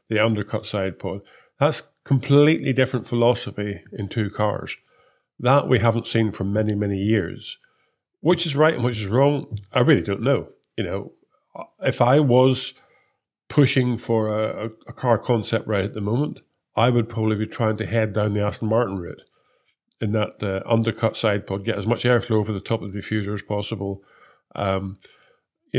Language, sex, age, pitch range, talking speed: English, male, 50-69, 105-125 Hz, 180 wpm